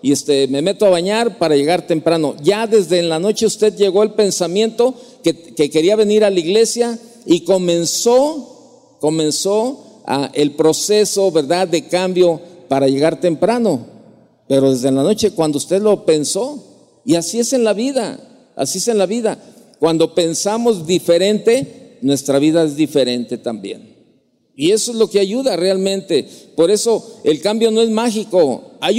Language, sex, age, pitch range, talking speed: Spanish, male, 50-69, 170-230 Hz, 165 wpm